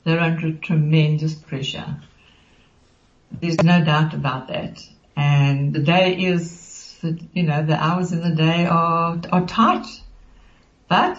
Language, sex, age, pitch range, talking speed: English, female, 70-89, 160-195 Hz, 130 wpm